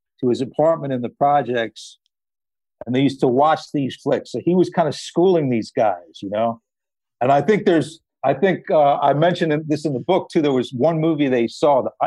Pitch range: 115-155 Hz